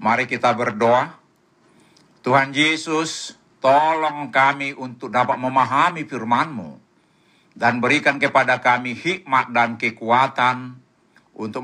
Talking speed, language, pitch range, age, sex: 100 wpm, Indonesian, 125-160 Hz, 60-79, male